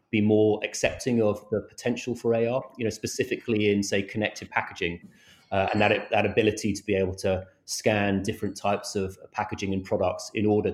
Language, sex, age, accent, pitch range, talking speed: English, male, 30-49, British, 95-110 Hz, 185 wpm